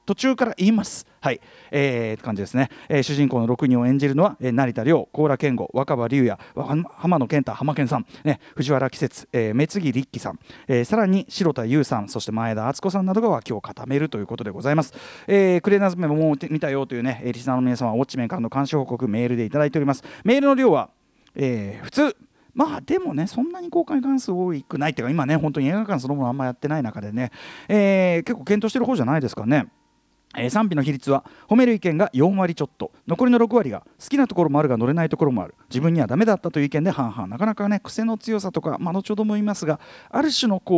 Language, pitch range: Japanese, 125-195 Hz